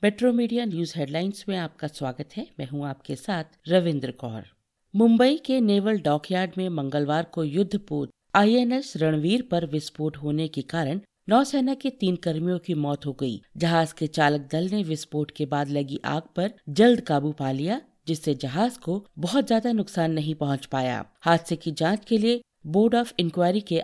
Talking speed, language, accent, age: 175 wpm, Hindi, native, 50-69